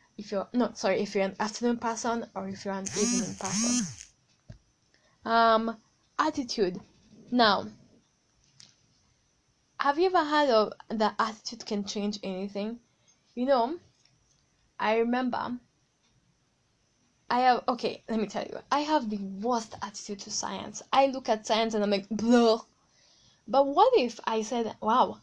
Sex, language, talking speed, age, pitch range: female, English, 145 wpm, 10-29, 200-245 Hz